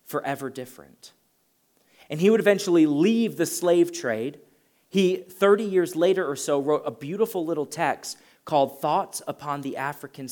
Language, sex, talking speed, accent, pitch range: English, male, 150 wpm, American, 145-190 Hz